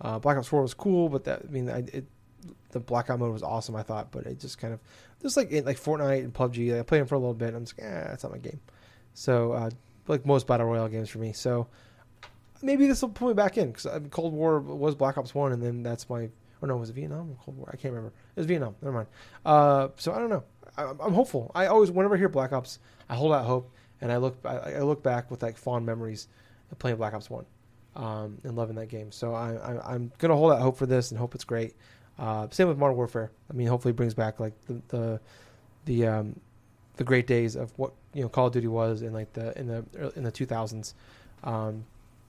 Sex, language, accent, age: male, English, American, 20-39